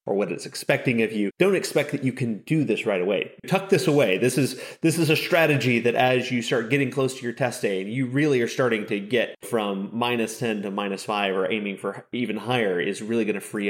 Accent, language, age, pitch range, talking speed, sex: American, English, 30-49, 110-145 Hz, 245 wpm, male